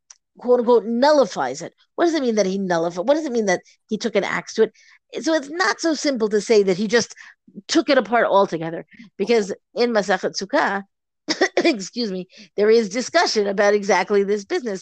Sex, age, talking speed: female, 50-69, 200 wpm